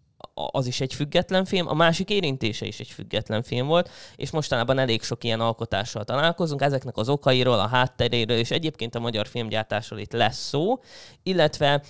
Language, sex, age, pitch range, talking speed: Hungarian, male, 20-39, 115-140 Hz, 170 wpm